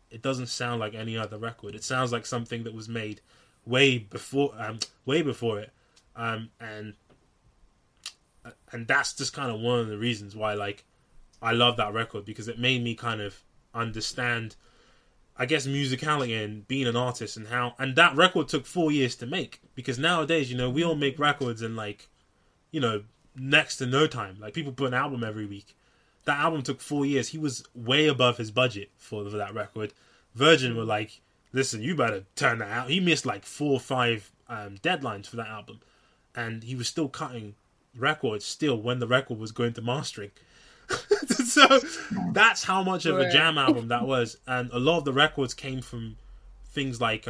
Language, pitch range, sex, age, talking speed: English, 110-135 Hz, male, 20-39, 195 wpm